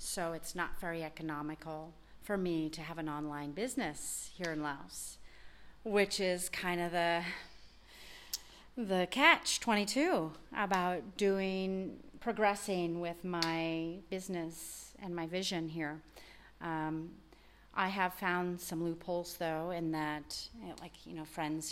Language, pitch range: English, 160-185 Hz